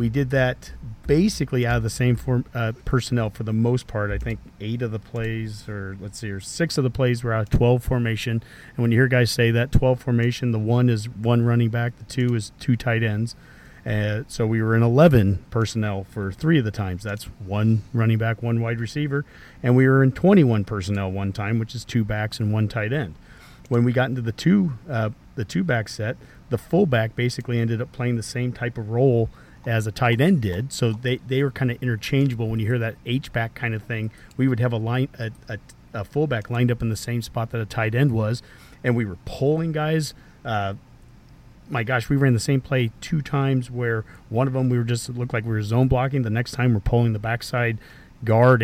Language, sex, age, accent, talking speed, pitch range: English, male, 40-59, American, 235 wpm, 110-130 Hz